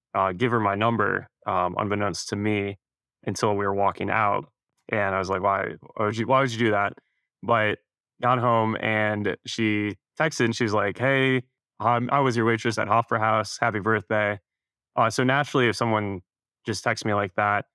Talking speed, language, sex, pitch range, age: 195 wpm, English, male, 105-120 Hz, 20-39